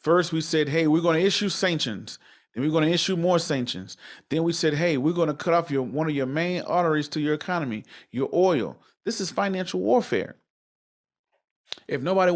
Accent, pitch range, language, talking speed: American, 145-185 Hz, English, 205 wpm